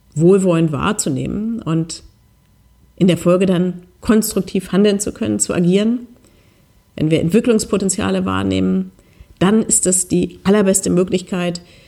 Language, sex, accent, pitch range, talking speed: German, female, German, 150-200 Hz, 115 wpm